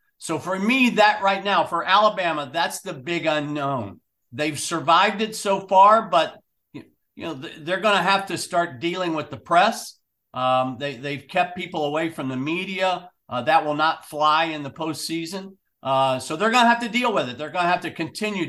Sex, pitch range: male, 145-185 Hz